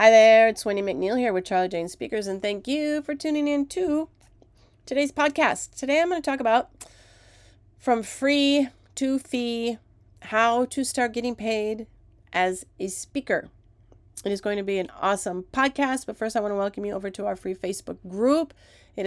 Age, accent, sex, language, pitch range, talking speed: 30-49, American, female, English, 180-235 Hz, 185 wpm